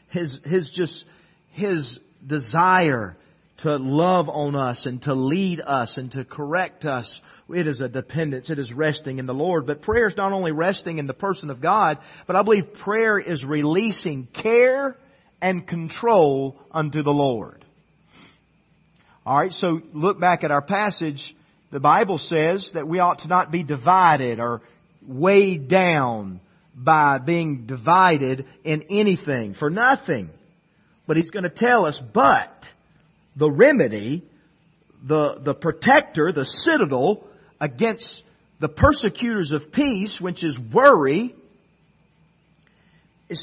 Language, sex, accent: English, male, American